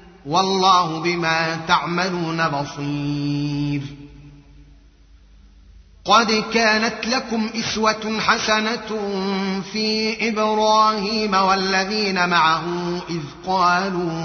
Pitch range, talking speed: 160-195 Hz, 65 wpm